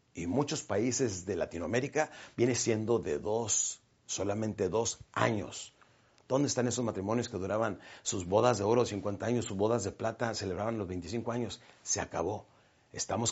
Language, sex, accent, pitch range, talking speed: Spanish, male, Mexican, 100-130 Hz, 160 wpm